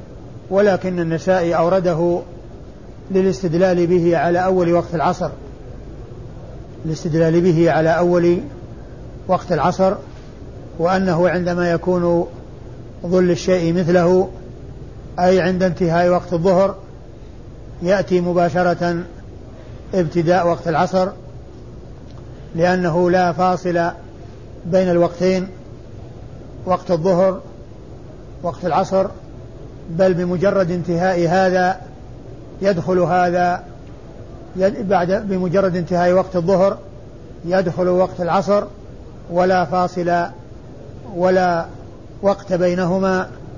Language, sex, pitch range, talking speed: Arabic, male, 130-185 Hz, 85 wpm